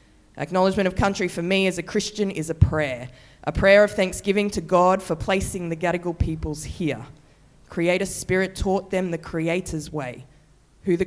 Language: English